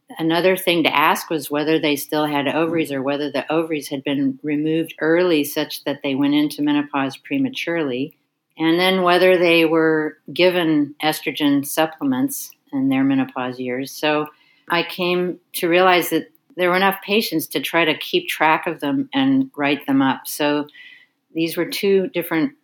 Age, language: 50-69, English